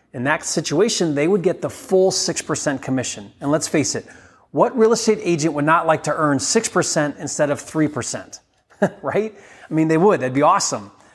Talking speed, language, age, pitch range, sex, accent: 190 wpm, English, 30-49, 135-175 Hz, male, American